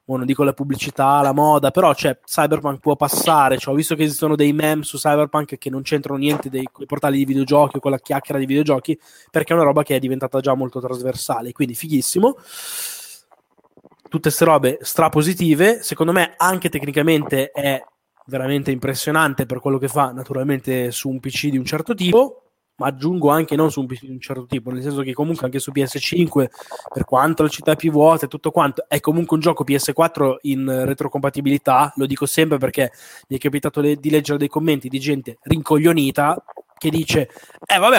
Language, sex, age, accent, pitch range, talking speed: Italian, male, 20-39, native, 135-160 Hz, 195 wpm